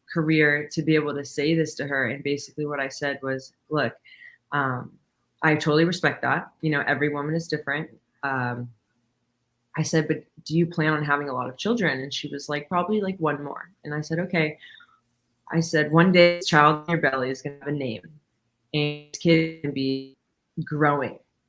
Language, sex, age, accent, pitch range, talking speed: English, female, 20-39, American, 140-160 Hz, 200 wpm